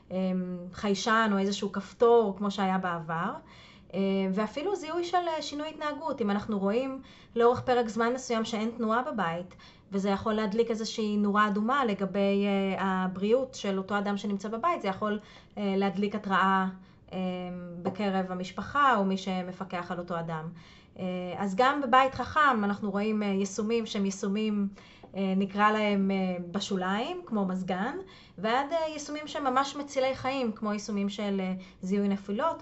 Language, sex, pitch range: Hebrew, female, 190-235 Hz